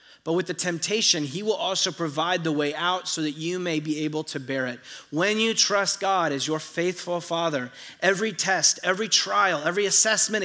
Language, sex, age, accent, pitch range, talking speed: English, male, 30-49, American, 140-185 Hz, 195 wpm